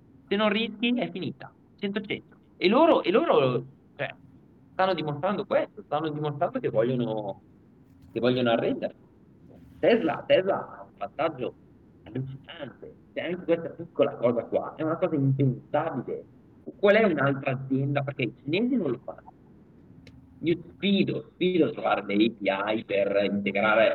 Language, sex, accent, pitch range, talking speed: Italian, male, native, 105-155 Hz, 140 wpm